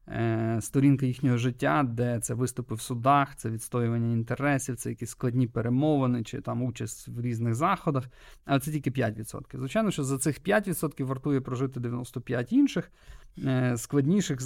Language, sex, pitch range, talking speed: Ukrainian, male, 120-140 Hz, 140 wpm